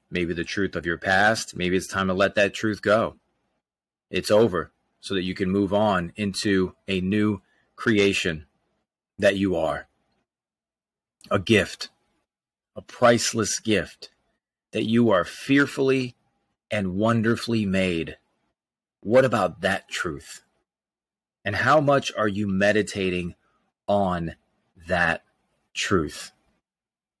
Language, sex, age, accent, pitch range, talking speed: English, male, 30-49, American, 95-115 Hz, 120 wpm